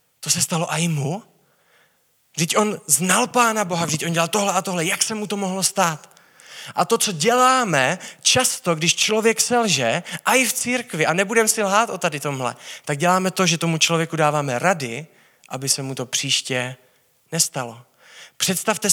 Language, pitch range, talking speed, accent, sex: Czech, 155-215 Hz, 180 wpm, native, male